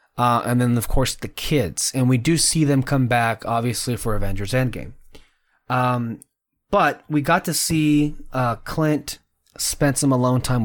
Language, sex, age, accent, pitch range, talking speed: English, male, 20-39, American, 115-150 Hz, 170 wpm